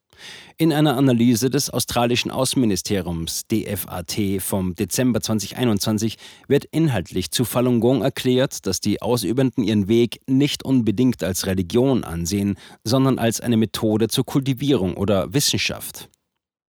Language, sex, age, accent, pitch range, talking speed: German, male, 40-59, German, 100-130 Hz, 120 wpm